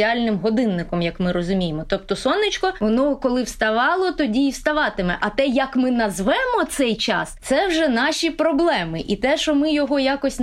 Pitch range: 215-270 Hz